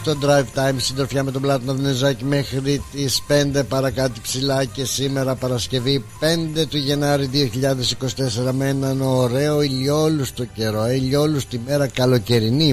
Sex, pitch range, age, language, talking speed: male, 115-140 Hz, 60-79, Greek, 130 wpm